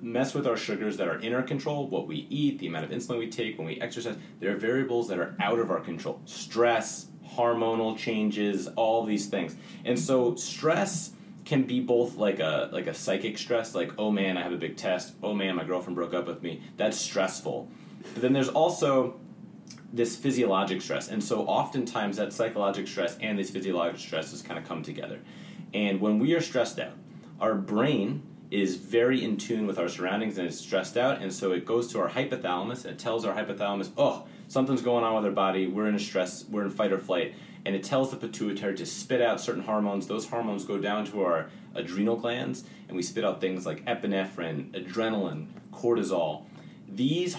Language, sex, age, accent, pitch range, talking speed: English, male, 30-49, American, 95-130 Hz, 205 wpm